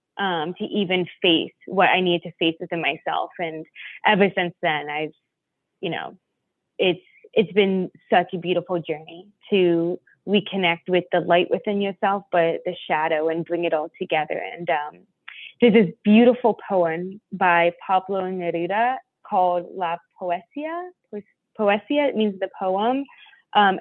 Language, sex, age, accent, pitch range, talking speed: English, female, 20-39, American, 170-200 Hz, 145 wpm